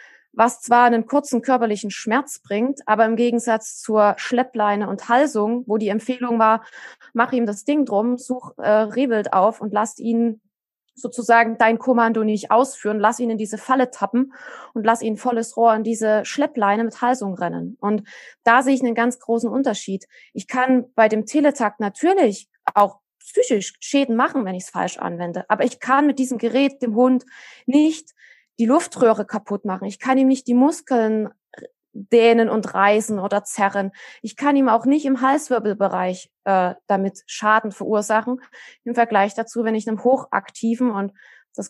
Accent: German